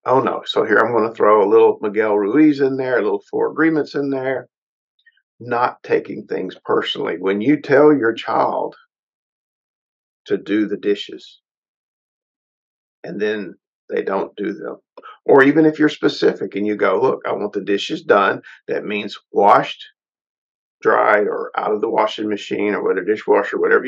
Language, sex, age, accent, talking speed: English, male, 50-69, American, 170 wpm